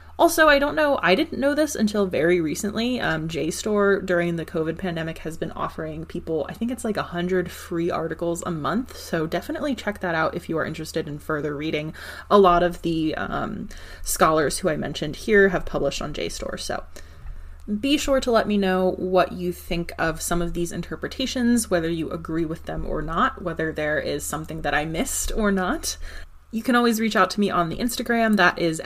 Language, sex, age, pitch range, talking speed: English, female, 20-39, 160-205 Hz, 205 wpm